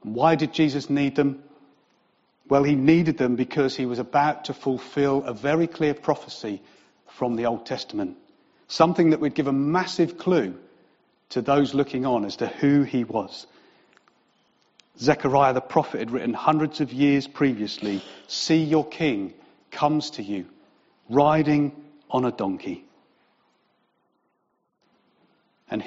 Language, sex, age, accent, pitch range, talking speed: English, male, 40-59, British, 130-155 Hz, 135 wpm